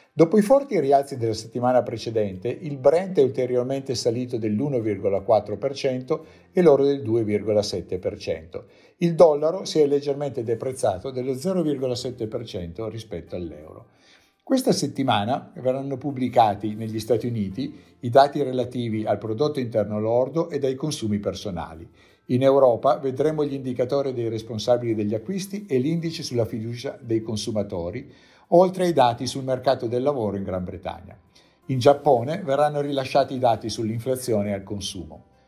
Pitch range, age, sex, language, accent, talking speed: 110-145 Hz, 50-69, male, Italian, native, 135 wpm